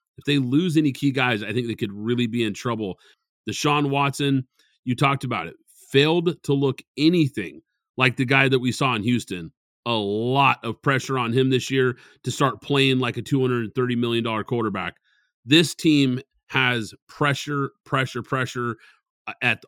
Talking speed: 170 wpm